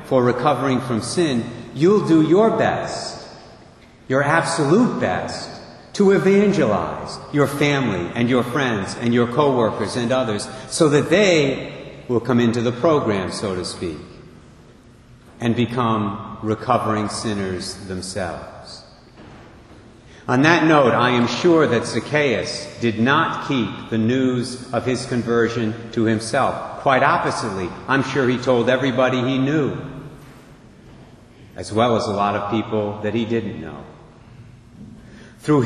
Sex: male